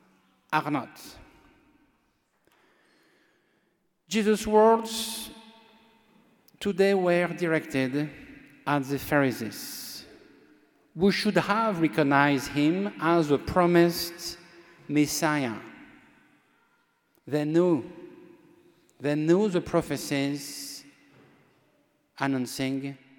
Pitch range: 145-220 Hz